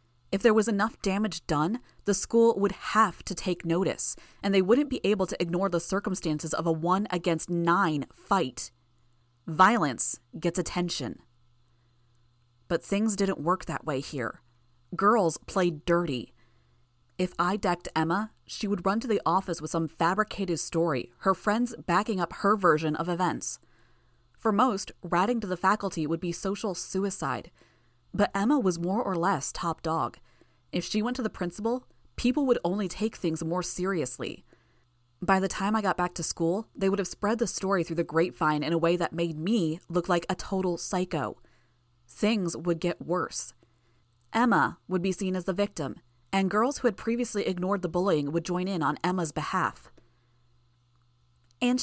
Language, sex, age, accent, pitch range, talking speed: English, female, 20-39, American, 150-200 Hz, 170 wpm